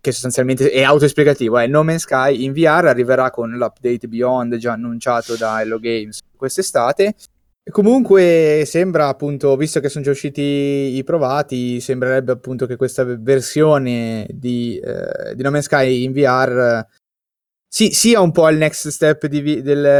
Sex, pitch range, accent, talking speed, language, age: male, 120-145 Hz, native, 160 wpm, Italian, 20-39